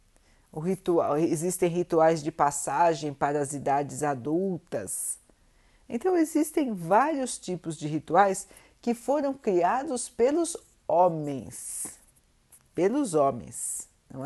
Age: 50-69